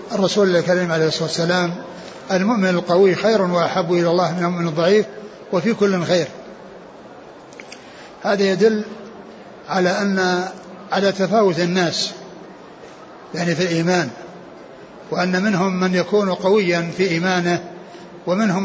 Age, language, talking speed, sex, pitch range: 60-79, Arabic, 115 wpm, male, 180-205 Hz